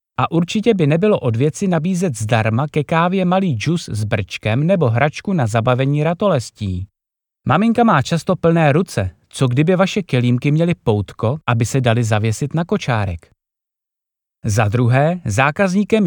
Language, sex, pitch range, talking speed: Czech, male, 115-170 Hz, 145 wpm